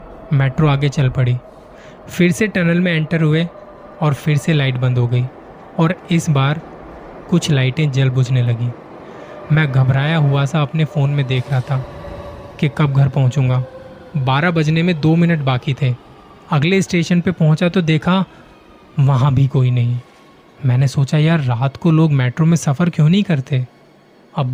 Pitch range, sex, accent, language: 135-170 Hz, male, native, Hindi